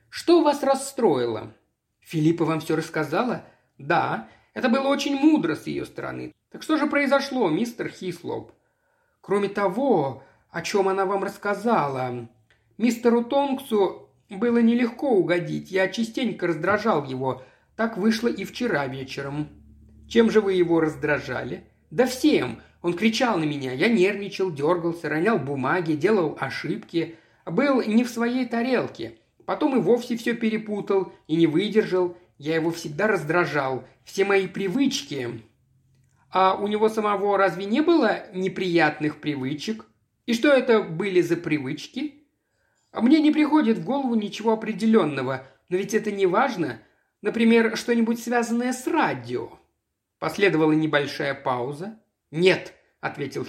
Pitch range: 155-240 Hz